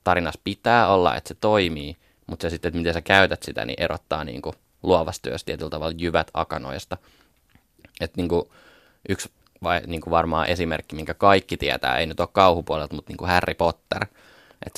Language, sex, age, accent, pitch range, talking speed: Finnish, male, 20-39, native, 85-95 Hz, 180 wpm